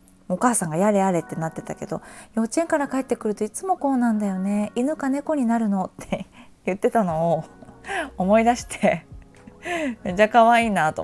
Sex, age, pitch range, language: female, 20-39, 165-235 Hz, Japanese